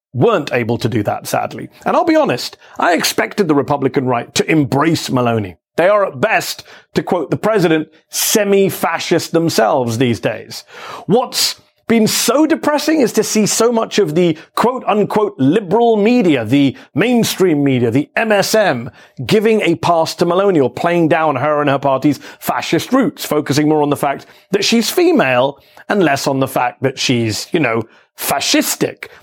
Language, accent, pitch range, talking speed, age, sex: English, British, 145-215 Hz, 165 wpm, 40-59, male